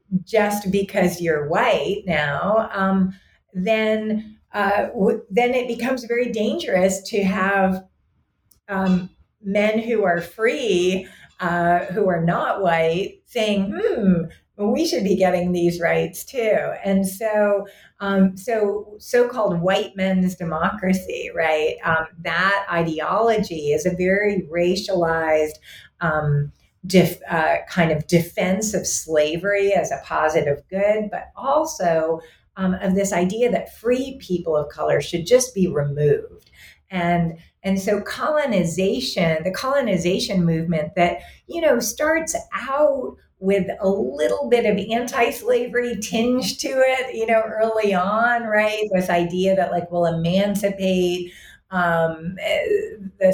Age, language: 40-59, English